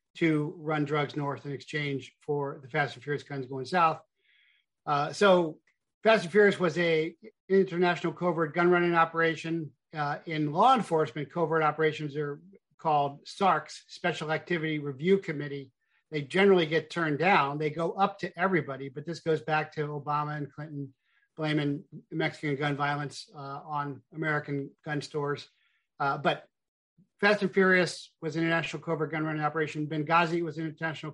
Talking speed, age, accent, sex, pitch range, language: 160 wpm, 50-69, American, male, 145-165 Hz, English